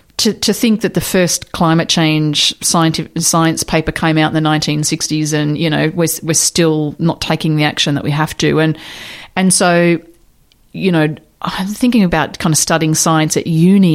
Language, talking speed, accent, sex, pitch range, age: English, 195 wpm, Australian, female, 155-185 Hz, 30-49